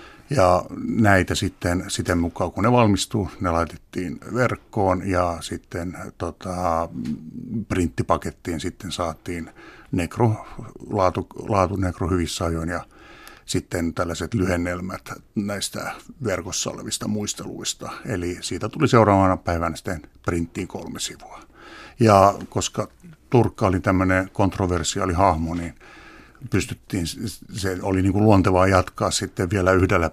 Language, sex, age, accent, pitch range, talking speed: Finnish, male, 60-79, native, 85-100 Hz, 110 wpm